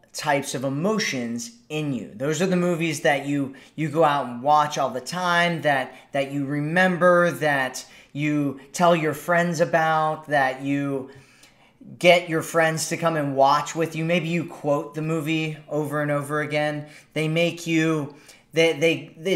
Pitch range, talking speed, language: 140-165 Hz, 165 wpm, English